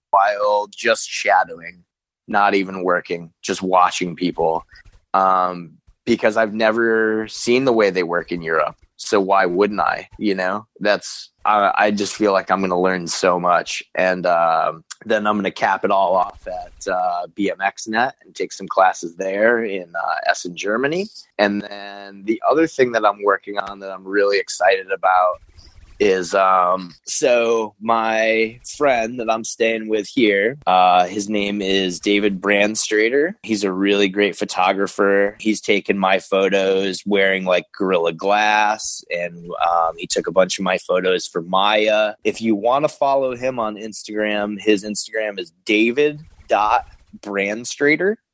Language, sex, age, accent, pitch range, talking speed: English, male, 20-39, American, 95-110 Hz, 155 wpm